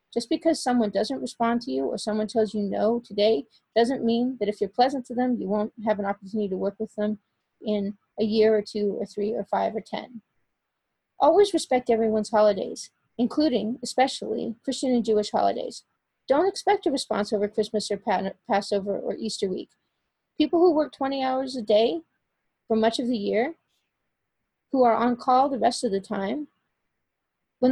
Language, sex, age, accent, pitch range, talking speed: English, female, 30-49, American, 215-260 Hz, 180 wpm